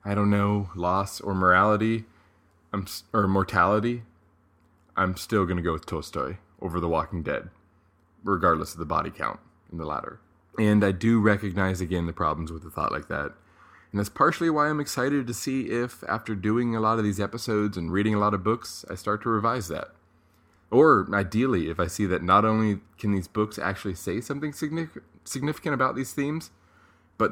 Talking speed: 185 wpm